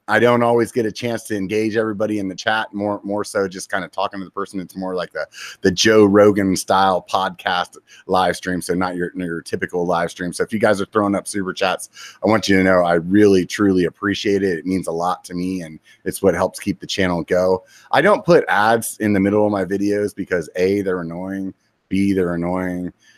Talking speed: 235 wpm